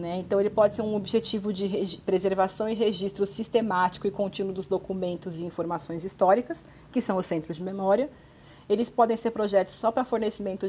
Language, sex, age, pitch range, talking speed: Portuguese, female, 40-59, 185-225 Hz, 175 wpm